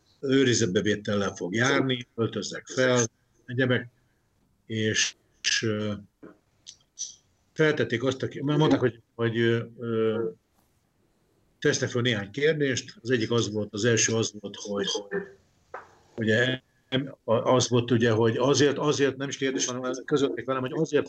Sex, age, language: male, 50-69, Hungarian